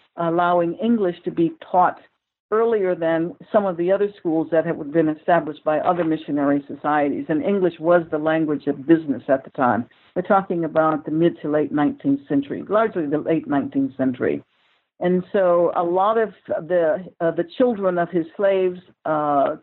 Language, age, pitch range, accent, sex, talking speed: English, 60-79, 160-200 Hz, American, female, 175 wpm